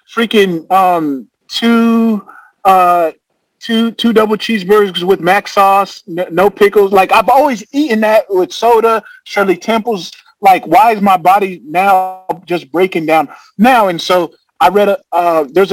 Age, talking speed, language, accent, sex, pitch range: 30-49, 145 wpm, English, American, male, 165-220 Hz